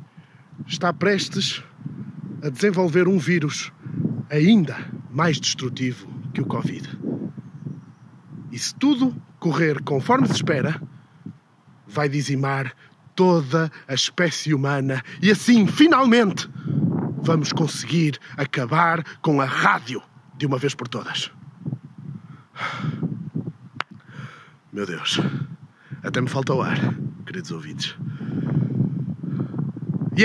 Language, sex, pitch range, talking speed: Portuguese, male, 145-195 Hz, 95 wpm